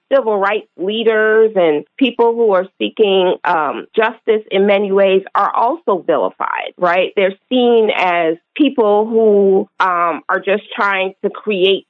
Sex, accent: female, American